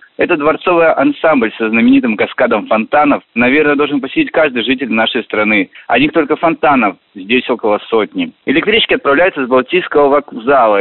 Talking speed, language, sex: 145 wpm, Russian, male